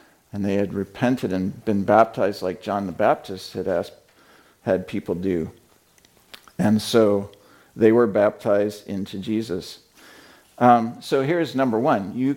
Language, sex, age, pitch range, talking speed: English, male, 50-69, 100-125 Hz, 140 wpm